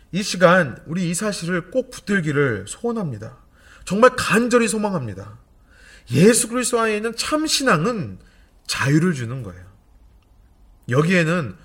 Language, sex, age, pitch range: Korean, male, 30-49, 115-185 Hz